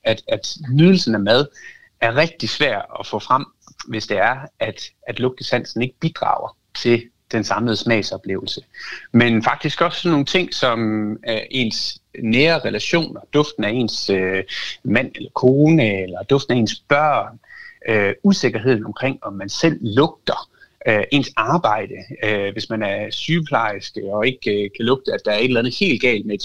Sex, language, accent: male, Danish, native